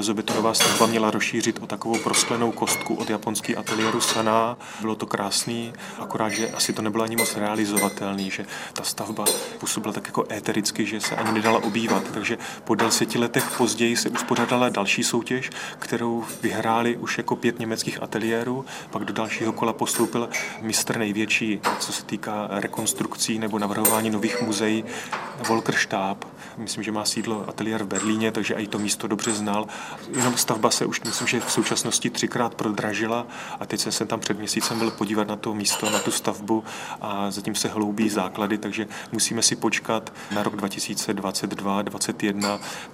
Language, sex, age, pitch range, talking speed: Czech, male, 30-49, 105-115 Hz, 160 wpm